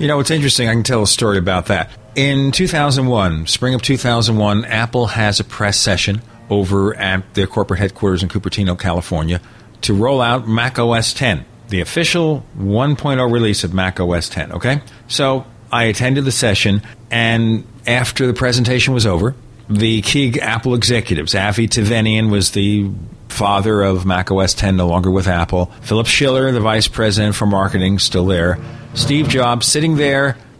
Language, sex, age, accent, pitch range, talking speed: English, male, 40-59, American, 105-135 Hz, 165 wpm